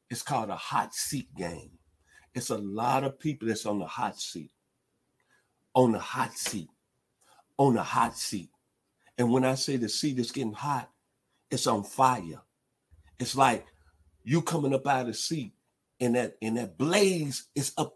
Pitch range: 100-135 Hz